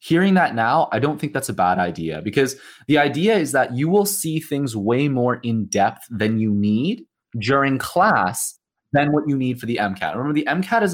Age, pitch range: 20-39, 100-145 Hz